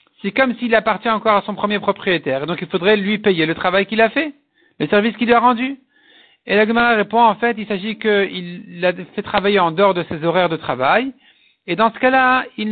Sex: male